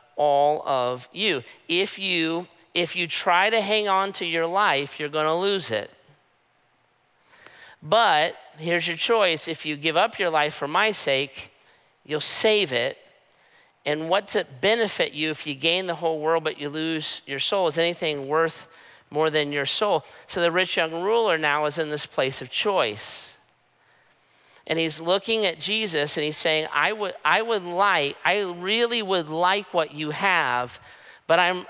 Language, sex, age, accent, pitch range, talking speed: English, male, 50-69, American, 155-195 Hz, 175 wpm